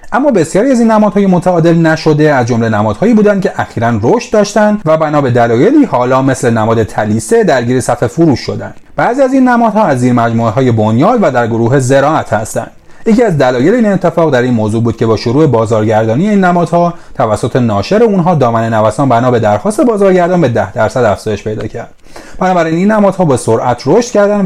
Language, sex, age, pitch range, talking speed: Persian, male, 30-49, 115-180 Hz, 195 wpm